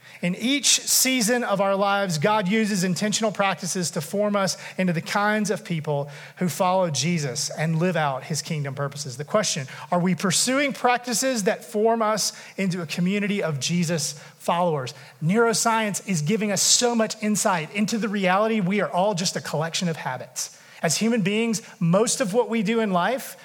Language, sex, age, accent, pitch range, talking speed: English, male, 30-49, American, 165-220 Hz, 180 wpm